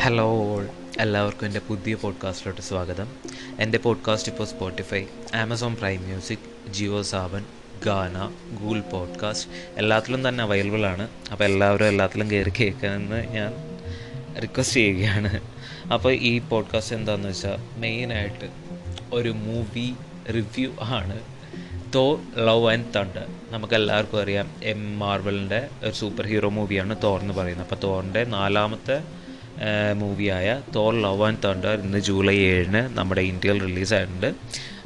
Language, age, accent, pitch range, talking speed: Malayalam, 20-39, native, 100-115 Hz, 120 wpm